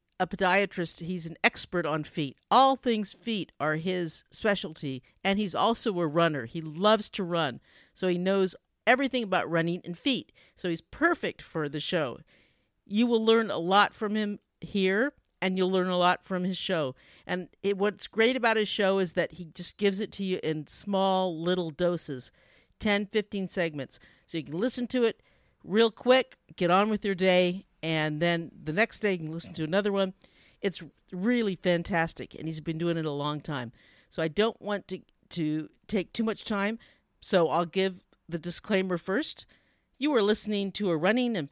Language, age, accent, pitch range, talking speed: English, 50-69, American, 165-210 Hz, 190 wpm